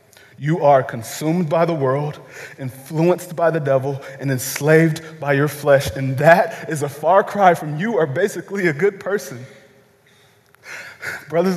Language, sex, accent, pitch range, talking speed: English, male, American, 130-165 Hz, 150 wpm